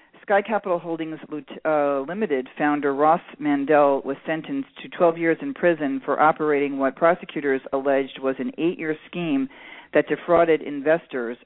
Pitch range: 140-170 Hz